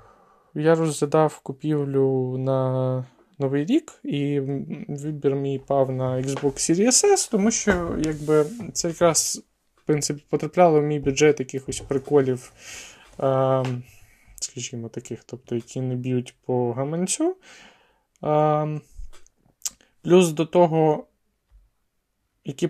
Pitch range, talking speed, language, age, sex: 130-170 Hz, 105 wpm, Ukrainian, 20-39, male